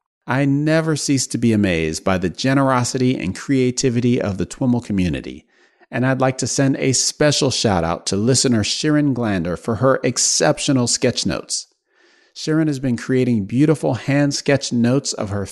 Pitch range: 115-140 Hz